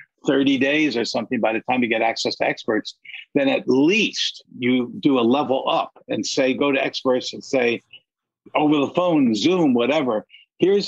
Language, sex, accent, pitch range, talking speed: English, male, American, 115-160 Hz, 180 wpm